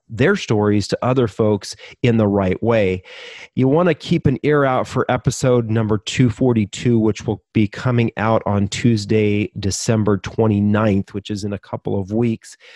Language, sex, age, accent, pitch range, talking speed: English, male, 30-49, American, 110-130 Hz, 170 wpm